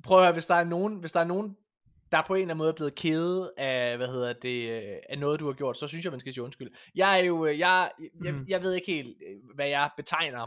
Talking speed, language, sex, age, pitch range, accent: 250 wpm, Danish, male, 20-39, 130-180 Hz, native